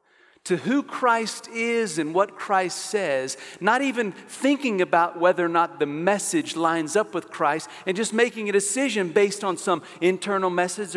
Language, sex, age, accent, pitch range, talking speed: English, male, 50-69, American, 175-245 Hz, 170 wpm